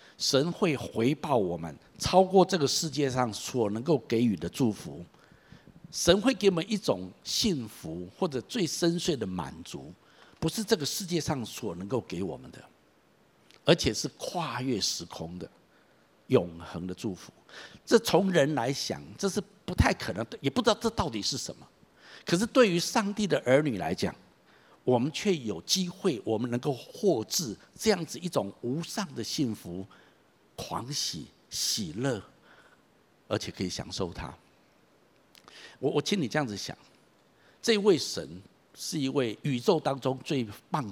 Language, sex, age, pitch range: Chinese, male, 60-79, 110-180 Hz